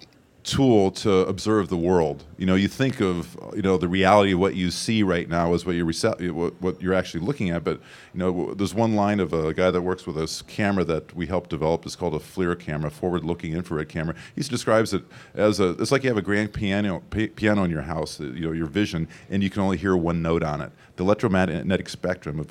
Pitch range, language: 85-105 Hz, English